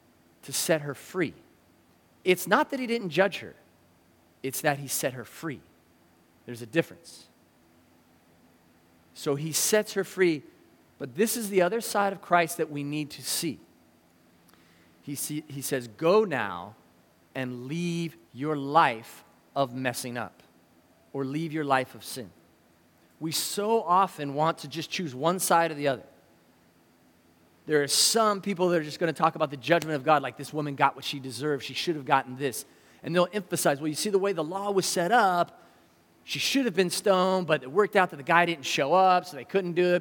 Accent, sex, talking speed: American, male, 190 wpm